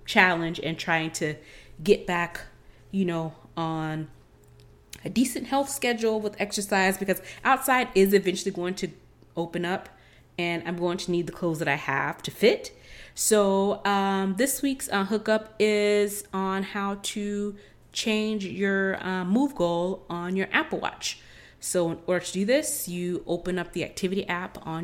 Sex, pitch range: female, 160-200 Hz